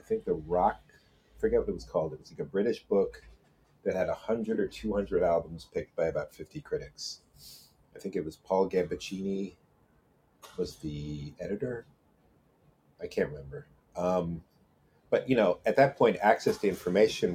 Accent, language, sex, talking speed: American, English, male, 165 wpm